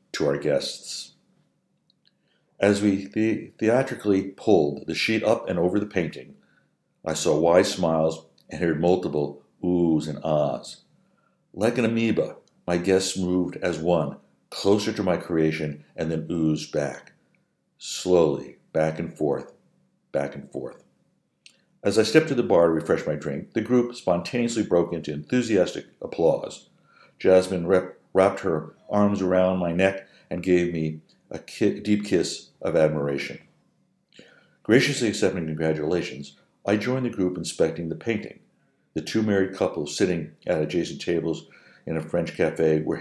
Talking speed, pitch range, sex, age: 145 wpm, 80-100 Hz, male, 60-79